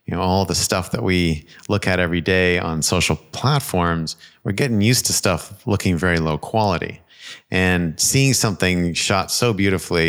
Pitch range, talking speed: 85-110 Hz, 170 wpm